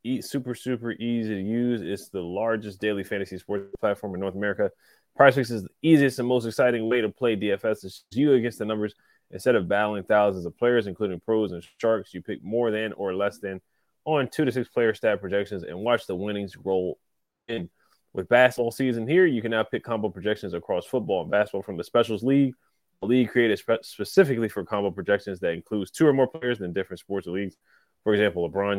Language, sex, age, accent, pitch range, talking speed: English, male, 20-39, American, 100-125 Hz, 210 wpm